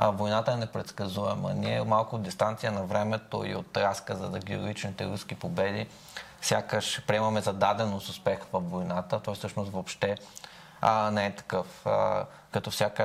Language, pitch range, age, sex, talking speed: Bulgarian, 100-110 Hz, 20-39, male, 165 wpm